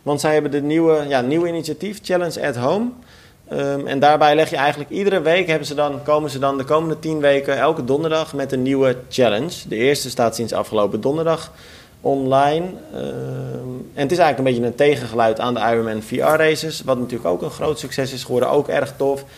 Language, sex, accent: Dutch, male, Dutch